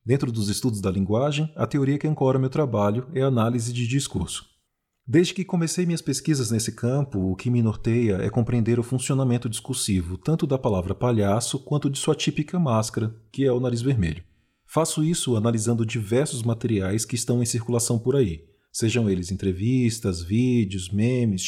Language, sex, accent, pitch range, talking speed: Portuguese, male, Brazilian, 110-140 Hz, 175 wpm